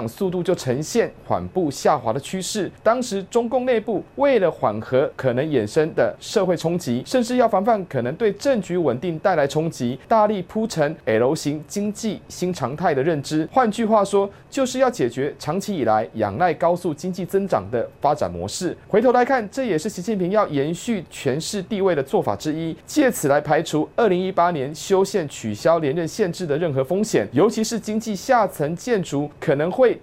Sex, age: male, 30-49